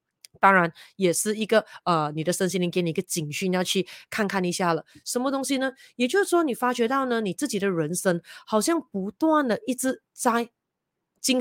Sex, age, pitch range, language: female, 30-49, 175-245 Hz, Chinese